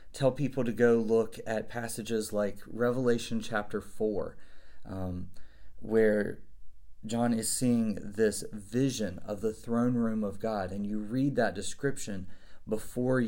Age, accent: 30-49, American